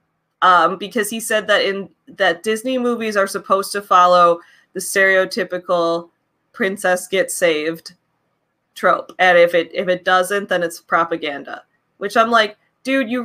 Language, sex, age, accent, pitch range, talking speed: English, female, 20-39, American, 175-210 Hz, 150 wpm